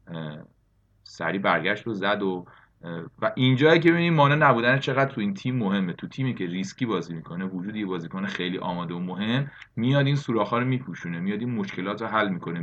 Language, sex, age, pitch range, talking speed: Persian, male, 30-49, 90-120 Hz, 185 wpm